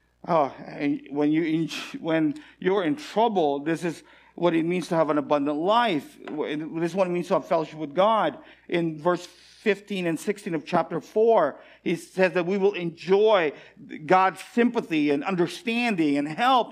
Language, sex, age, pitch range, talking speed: English, male, 50-69, 135-175 Hz, 165 wpm